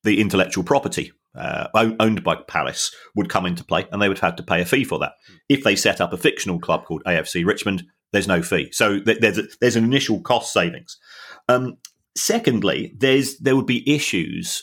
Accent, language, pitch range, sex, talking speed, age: British, English, 90-120 Hz, male, 200 wpm, 40-59